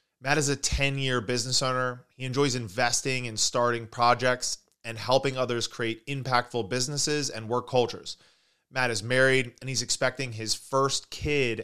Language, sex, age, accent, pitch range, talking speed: English, male, 20-39, American, 105-130 Hz, 155 wpm